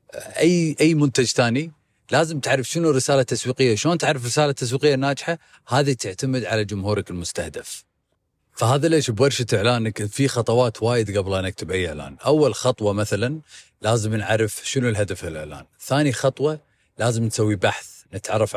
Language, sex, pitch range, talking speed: Arabic, male, 105-130 Hz, 150 wpm